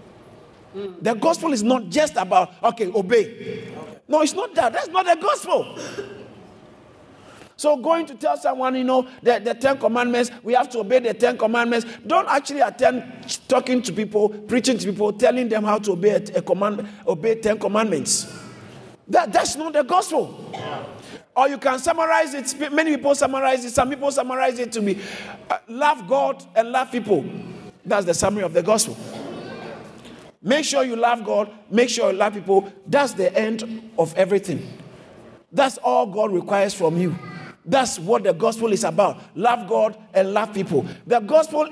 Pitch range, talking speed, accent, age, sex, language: 210-275 Hz, 170 wpm, Nigerian, 50-69, male, English